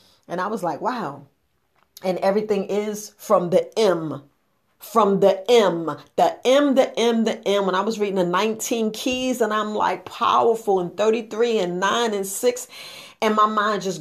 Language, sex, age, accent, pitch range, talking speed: English, female, 40-59, American, 175-220 Hz, 175 wpm